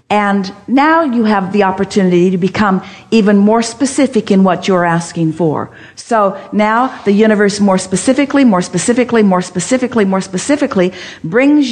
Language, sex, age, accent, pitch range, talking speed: English, female, 50-69, American, 180-235 Hz, 150 wpm